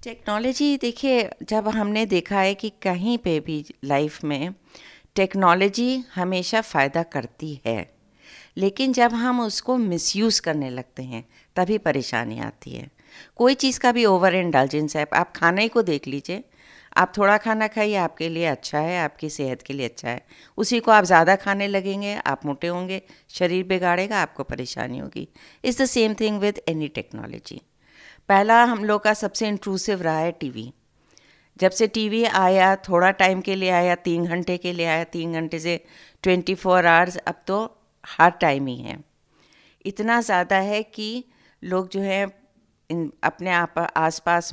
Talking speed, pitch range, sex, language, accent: 165 wpm, 165-210 Hz, female, Hindi, native